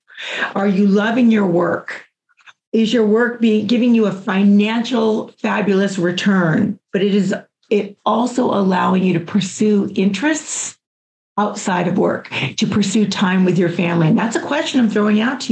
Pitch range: 190-225 Hz